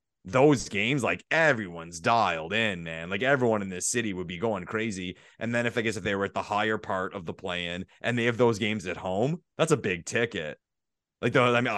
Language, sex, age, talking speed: English, male, 30-49, 235 wpm